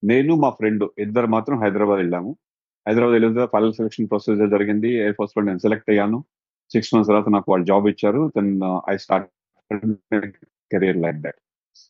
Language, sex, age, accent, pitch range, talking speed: Telugu, male, 30-49, native, 105-130 Hz, 155 wpm